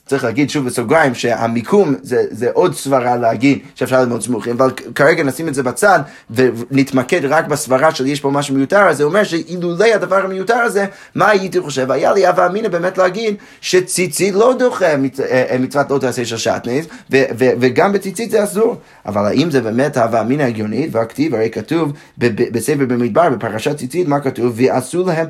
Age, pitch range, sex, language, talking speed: 30-49, 130-180 Hz, male, Hebrew, 180 wpm